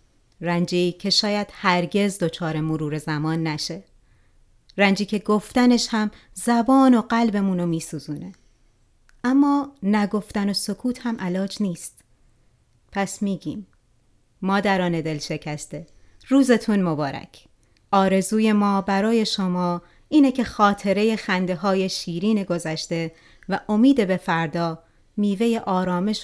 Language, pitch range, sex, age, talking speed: Persian, 165-205 Hz, female, 30-49, 110 wpm